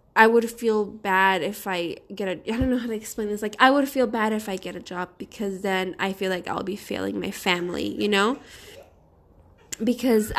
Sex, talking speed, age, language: female, 220 wpm, 20-39, English